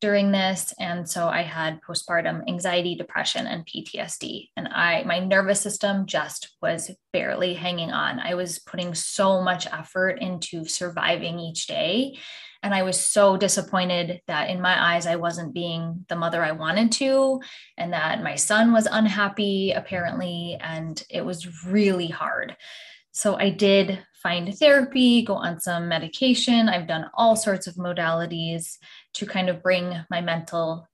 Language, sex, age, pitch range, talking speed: English, female, 10-29, 175-215 Hz, 155 wpm